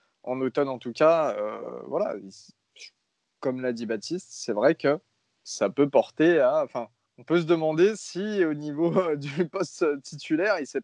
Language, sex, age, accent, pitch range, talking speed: French, male, 20-39, French, 130-165 Hz, 170 wpm